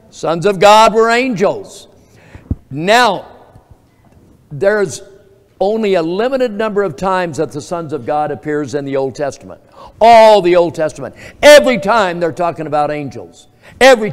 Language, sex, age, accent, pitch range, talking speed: English, male, 60-79, American, 145-205 Hz, 145 wpm